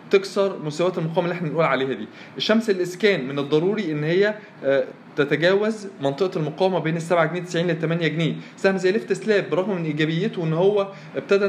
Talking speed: 170 wpm